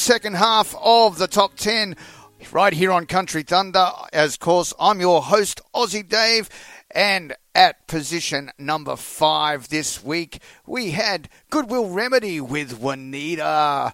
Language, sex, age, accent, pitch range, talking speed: English, male, 40-59, Australian, 155-210 Hz, 140 wpm